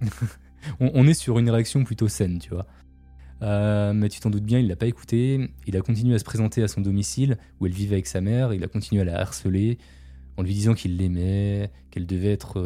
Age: 20-39